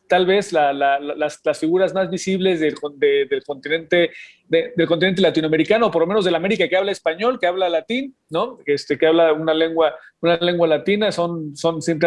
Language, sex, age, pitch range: Spanish, male, 40-59, 155-195 Hz